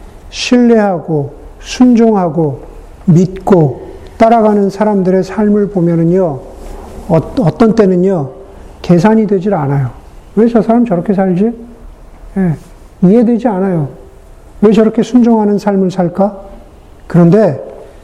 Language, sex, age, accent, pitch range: Korean, male, 50-69, native, 165-210 Hz